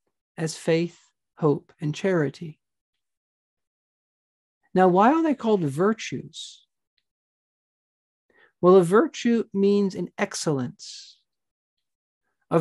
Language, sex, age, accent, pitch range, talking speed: English, male, 50-69, American, 165-210 Hz, 85 wpm